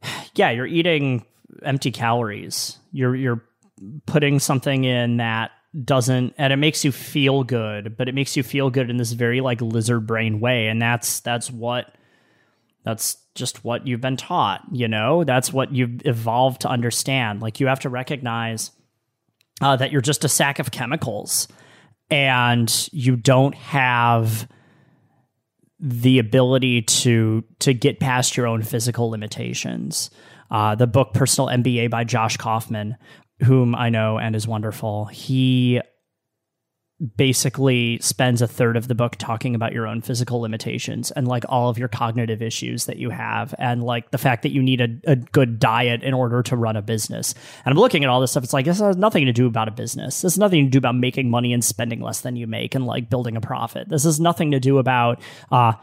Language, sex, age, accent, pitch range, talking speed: English, male, 20-39, American, 115-140 Hz, 185 wpm